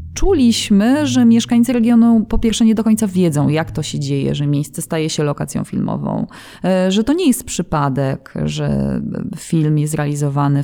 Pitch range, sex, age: 160-225 Hz, female, 20-39